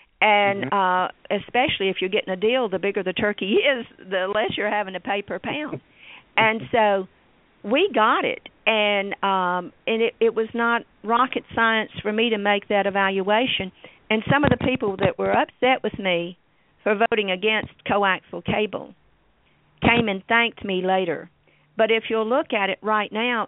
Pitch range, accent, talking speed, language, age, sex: 185-220 Hz, American, 175 wpm, English, 50-69, female